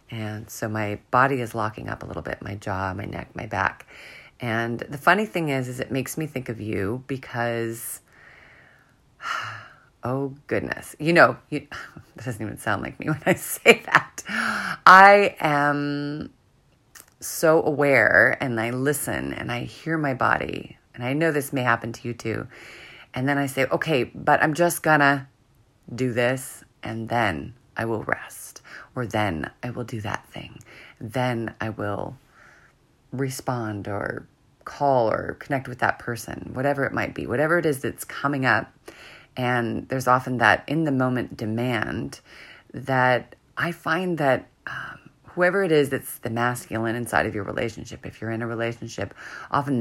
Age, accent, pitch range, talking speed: 30-49, American, 115-140 Hz, 165 wpm